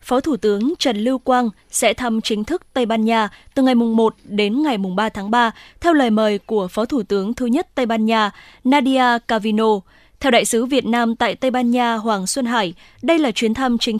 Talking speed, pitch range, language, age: 230 wpm, 220-265 Hz, Vietnamese, 20-39